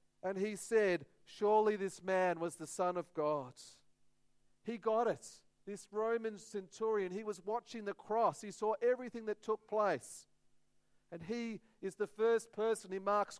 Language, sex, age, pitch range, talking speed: English, male, 40-59, 170-210 Hz, 160 wpm